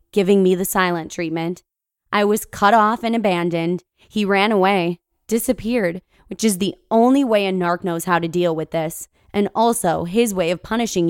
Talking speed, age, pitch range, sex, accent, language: 185 wpm, 20-39, 180-240 Hz, female, American, English